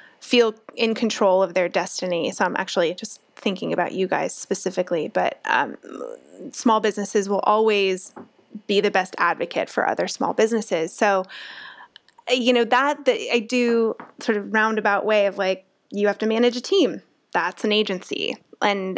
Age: 20-39